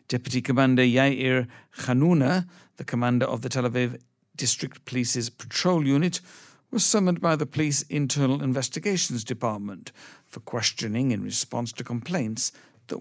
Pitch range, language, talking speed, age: 120-145 Hz, English, 135 wpm, 60-79